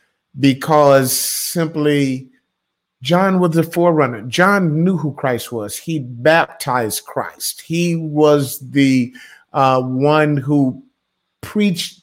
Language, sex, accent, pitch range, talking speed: English, male, American, 135-180 Hz, 105 wpm